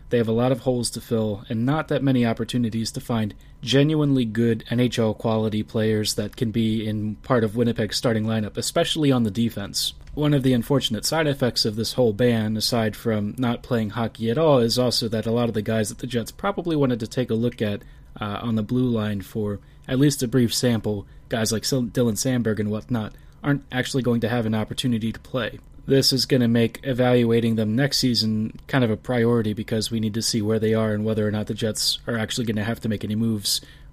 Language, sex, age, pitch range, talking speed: English, male, 30-49, 110-130 Hz, 230 wpm